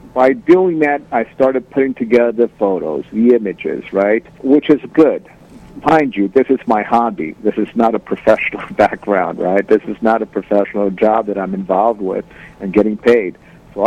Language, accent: English, American